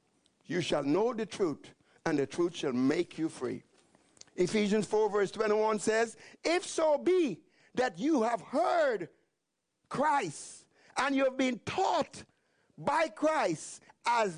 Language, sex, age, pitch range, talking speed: English, male, 60-79, 180-295 Hz, 140 wpm